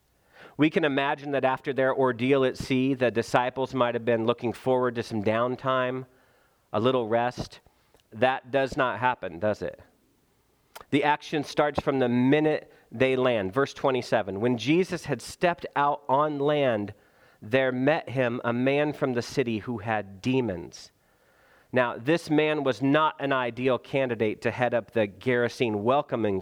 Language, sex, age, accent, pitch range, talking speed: English, male, 40-59, American, 125-165 Hz, 160 wpm